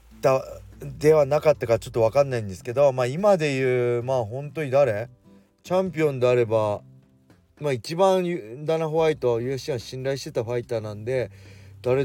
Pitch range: 110-155 Hz